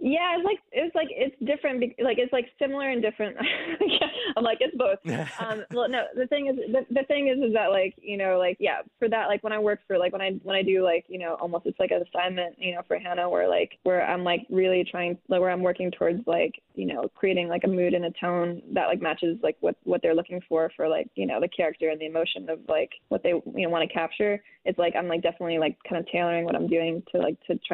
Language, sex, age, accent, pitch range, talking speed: English, female, 20-39, American, 175-210 Hz, 265 wpm